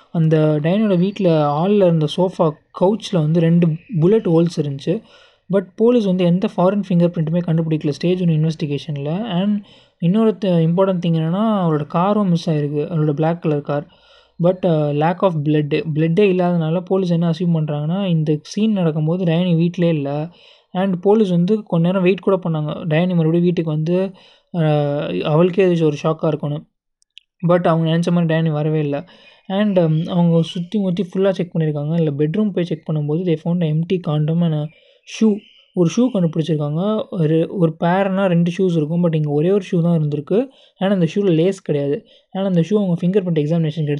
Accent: native